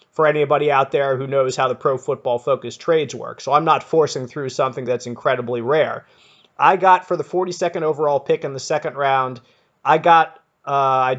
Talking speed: 190 wpm